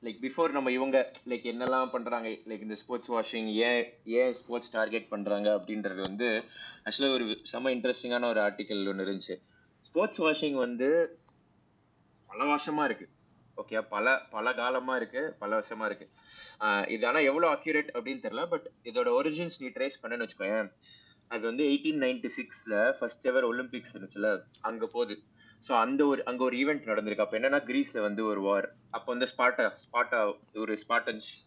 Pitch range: 110-150 Hz